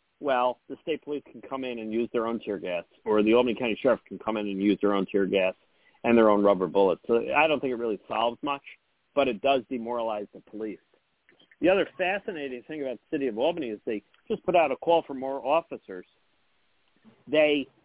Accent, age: American, 50-69